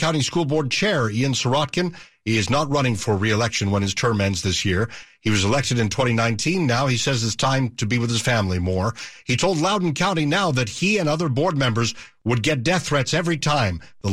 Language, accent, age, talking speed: English, American, 60-79, 225 wpm